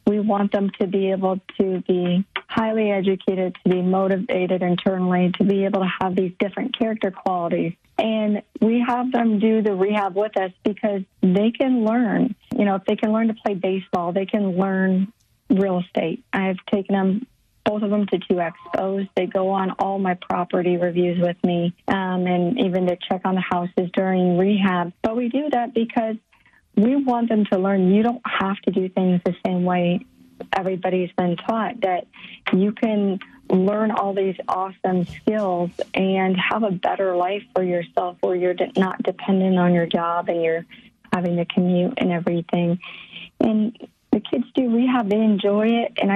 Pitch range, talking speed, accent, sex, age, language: 185-220 Hz, 180 wpm, American, female, 40-59, English